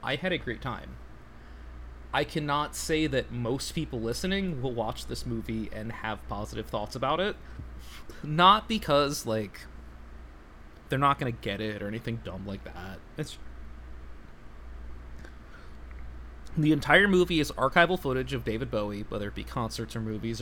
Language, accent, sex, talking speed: English, American, male, 155 wpm